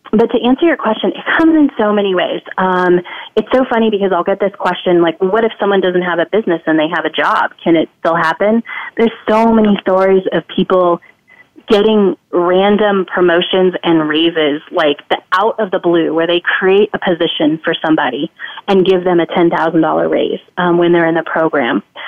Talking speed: 200 wpm